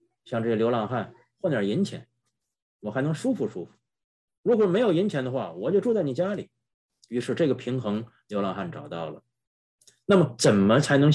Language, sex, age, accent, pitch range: Chinese, male, 30-49, native, 110-150 Hz